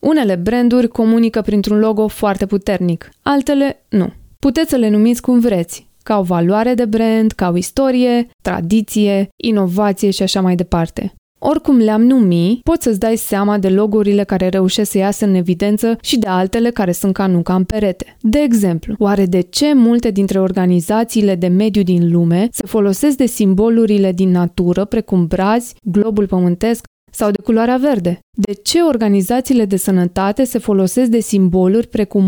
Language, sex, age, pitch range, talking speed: Romanian, female, 20-39, 190-240 Hz, 165 wpm